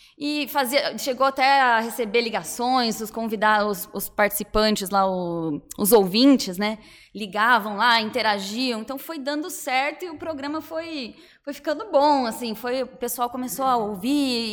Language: Portuguese